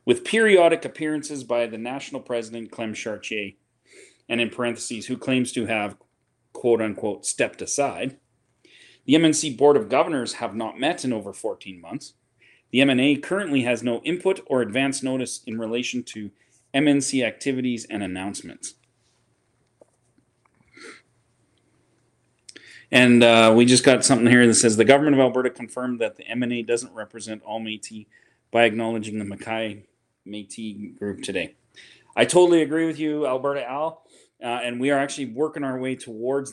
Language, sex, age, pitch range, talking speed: English, male, 30-49, 110-135 Hz, 150 wpm